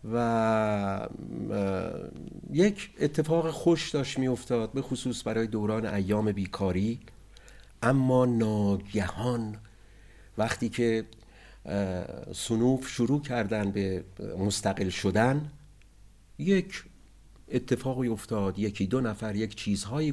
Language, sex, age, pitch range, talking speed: Persian, male, 50-69, 95-125 Hz, 90 wpm